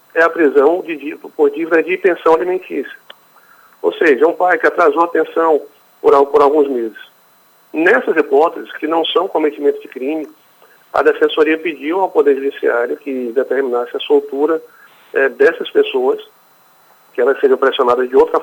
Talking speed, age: 165 wpm, 40-59